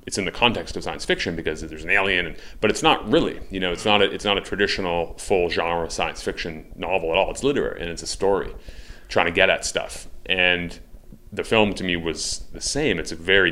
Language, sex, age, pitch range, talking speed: English, male, 30-49, 85-105 Hz, 240 wpm